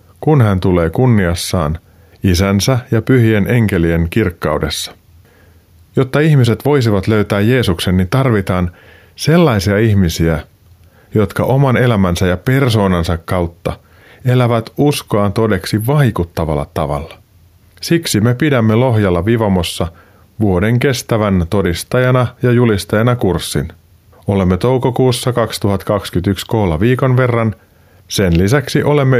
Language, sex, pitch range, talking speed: Finnish, male, 90-120 Hz, 100 wpm